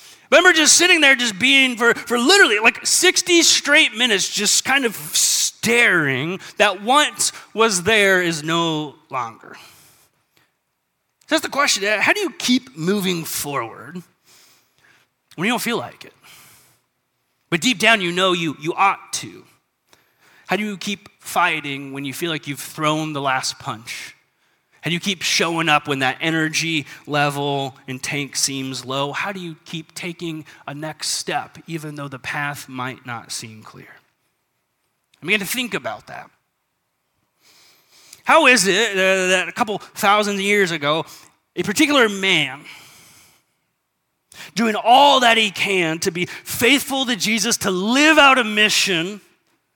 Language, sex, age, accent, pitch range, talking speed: English, male, 30-49, American, 150-230 Hz, 150 wpm